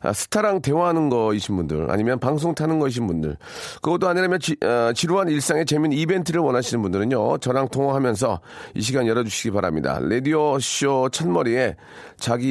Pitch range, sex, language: 115-155 Hz, male, Korean